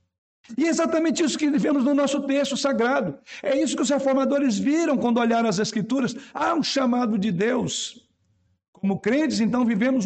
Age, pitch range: 60-79, 150-235 Hz